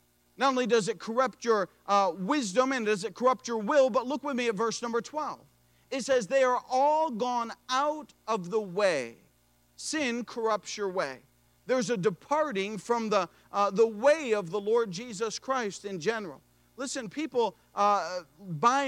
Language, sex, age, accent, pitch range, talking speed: English, male, 40-59, American, 200-260 Hz, 175 wpm